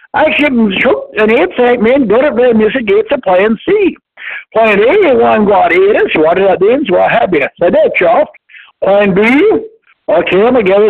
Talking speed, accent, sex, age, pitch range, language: 200 wpm, American, male, 60-79, 205-275 Hz, English